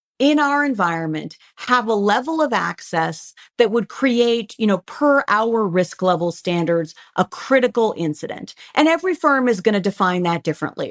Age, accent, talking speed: 40-59, American, 165 wpm